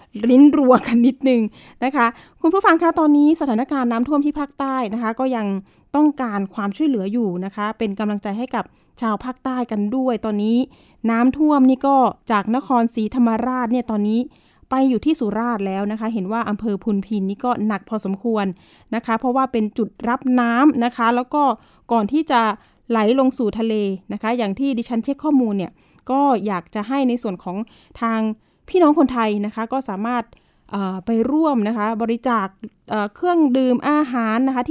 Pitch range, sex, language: 215-255 Hz, female, Thai